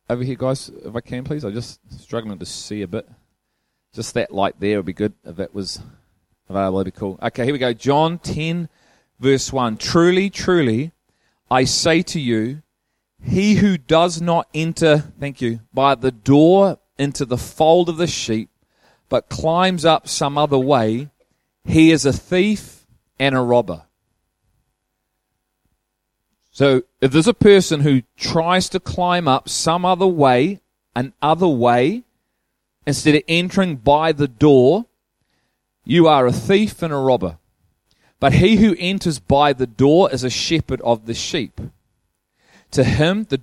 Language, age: English, 30-49